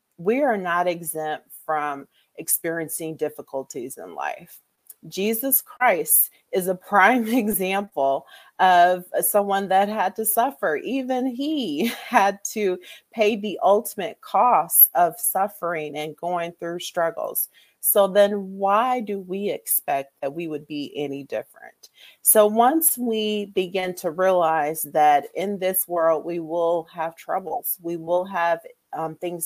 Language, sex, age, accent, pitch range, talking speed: English, female, 40-59, American, 165-220 Hz, 135 wpm